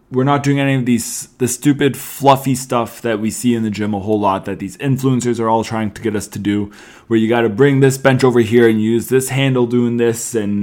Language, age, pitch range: English, 20-39, 120-155 Hz